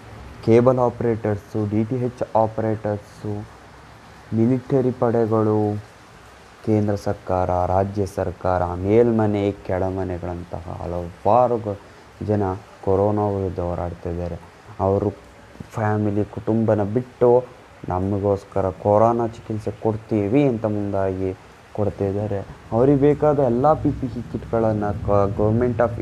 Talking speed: 85 wpm